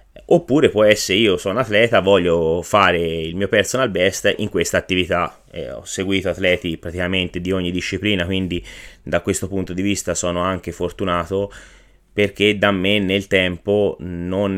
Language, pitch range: Italian, 90-100 Hz